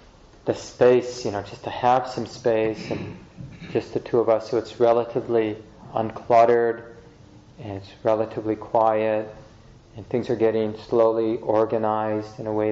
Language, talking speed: English, 150 wpm